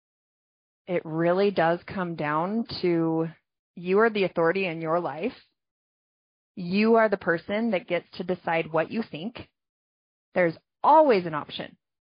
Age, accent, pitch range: 20-39, American, 185-245 Hz